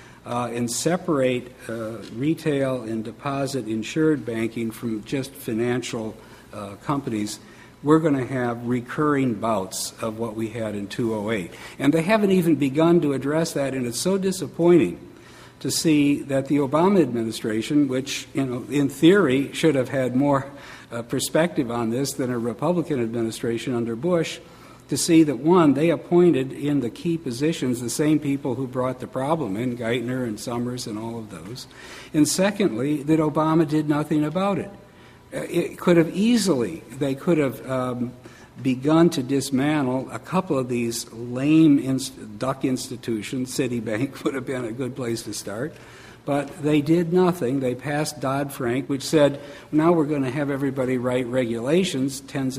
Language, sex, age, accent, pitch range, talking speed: English, male, 60-79, American, 120-150 Hz, 160 wpm